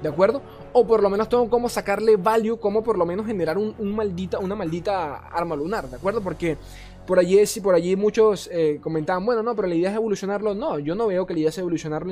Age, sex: 20-39, male